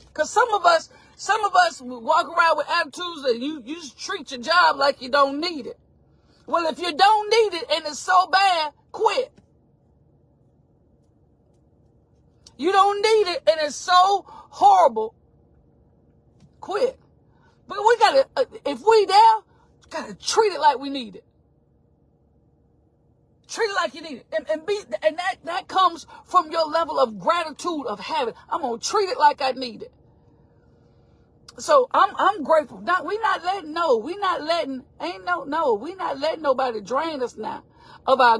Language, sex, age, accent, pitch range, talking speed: English, female, 40-59, American, 260-375 Hz, 170 wpm